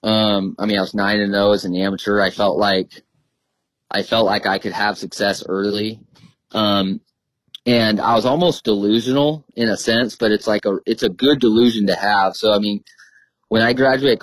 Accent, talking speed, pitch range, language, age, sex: American, 200 wpm, 100-115 Hz, English, 30-49, male